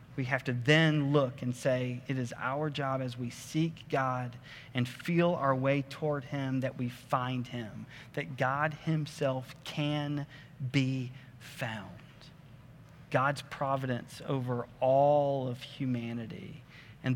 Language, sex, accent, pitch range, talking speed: English, male, American, 125-155 Hz, 135 wpm